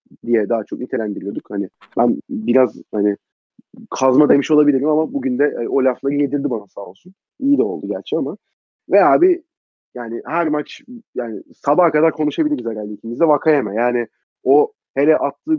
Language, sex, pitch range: Turkish, male, 145-195 Hz